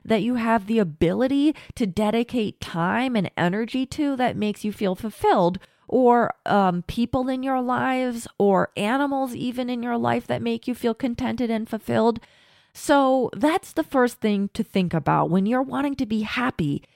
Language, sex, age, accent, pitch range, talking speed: English, female, 30-49, American, 205-265 Hz, 175 wpm